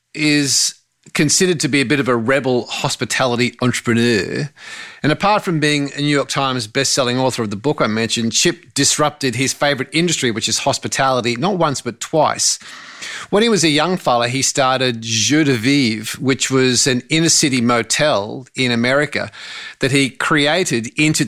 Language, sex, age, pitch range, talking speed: English, male, 30-49, 120-145 Hz, 170 wpm